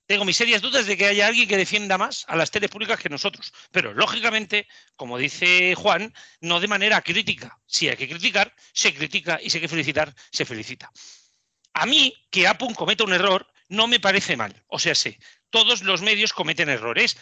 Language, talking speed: Spanish, 200 wpm